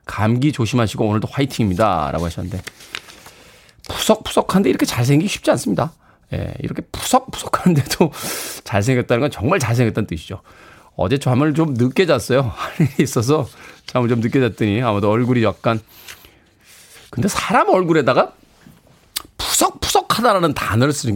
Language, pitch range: Korean, 105-150 Hz